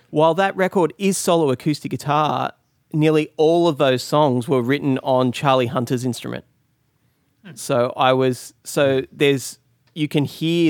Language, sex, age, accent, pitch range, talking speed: English, male, 30-49, Australian, 120-145 Hz, 145 wpm